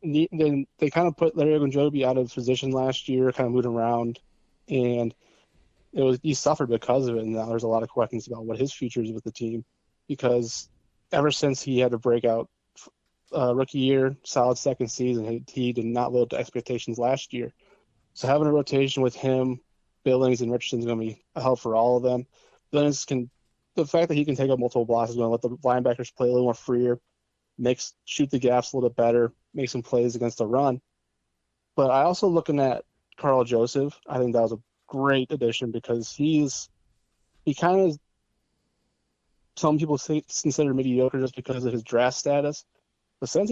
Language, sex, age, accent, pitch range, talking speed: English, male, 20-39, American, 120-140 Hz, 205 wpm